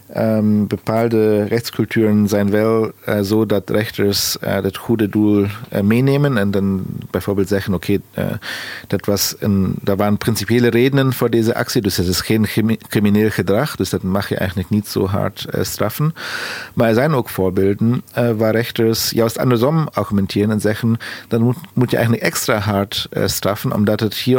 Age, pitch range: 40-59, 105-125 Hz